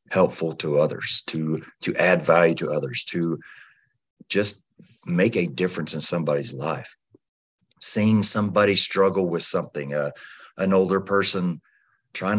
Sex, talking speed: male, 130 wpm